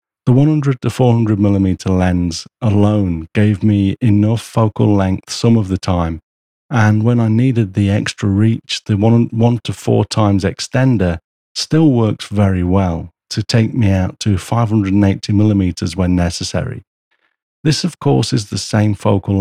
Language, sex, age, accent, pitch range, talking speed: English, male, 50-69, British, 95-115 Hz, 155 wpm